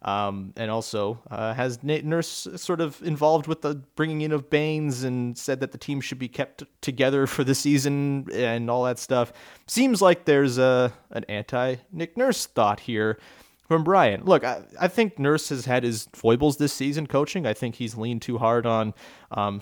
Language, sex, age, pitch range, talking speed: English, male, 30-49, 115-145 Hz, 195 wpm